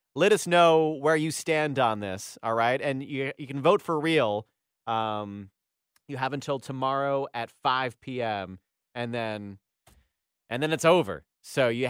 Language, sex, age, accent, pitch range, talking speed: English, male, 30-49, American, 125-165 Hz, 165 wpm